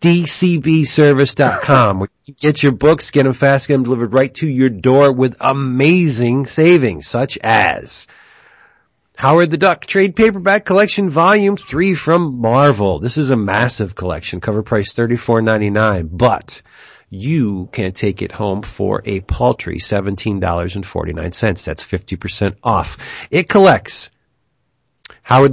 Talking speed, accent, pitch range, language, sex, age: 130 wpm, American, 105-155 Hz, English, male, 40-59